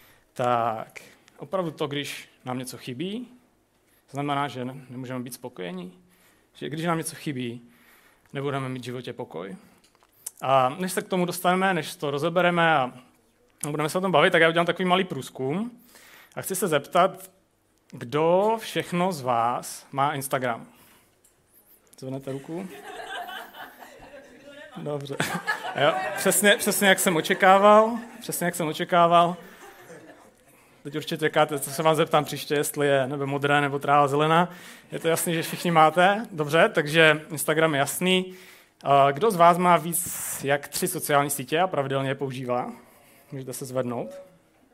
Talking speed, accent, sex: 145 wpm, native, male